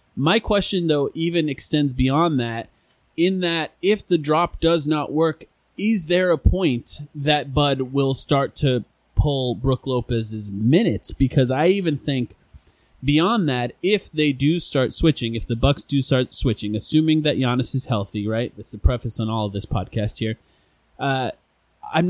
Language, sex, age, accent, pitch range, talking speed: English, male, 20-39, American, 125-155 Hz, 170 wpm